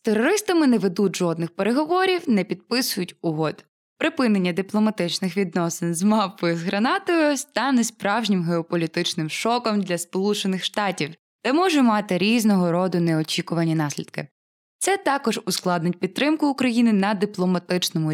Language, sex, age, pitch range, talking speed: Ukrainian, female, 20-39, 175-225 Hz, 120 wpm